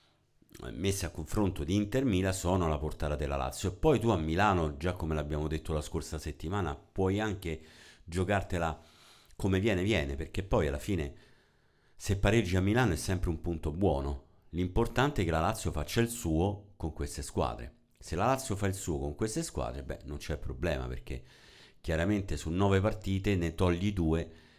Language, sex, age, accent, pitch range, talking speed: Italian, male, 50-69, native, 80-100 Hz, 180 wpm